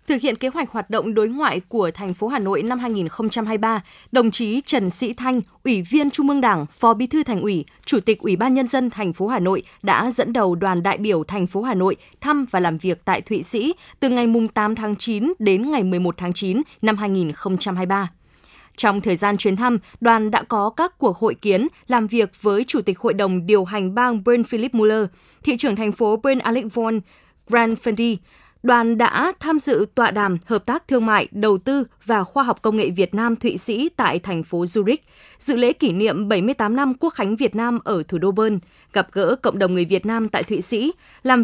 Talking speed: 215 wpm